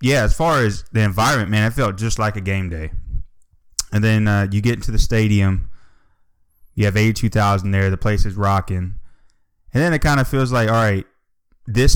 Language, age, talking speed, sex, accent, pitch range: English, 20-39, 200 wpm, male, American, 90-120 Hz